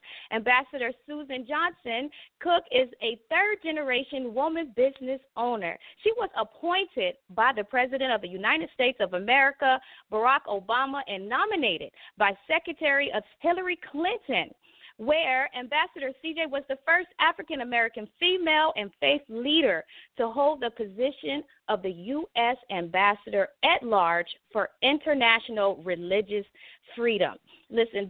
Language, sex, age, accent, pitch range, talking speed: English, female, 40-59, American, 230-330 Hz, 120 wpm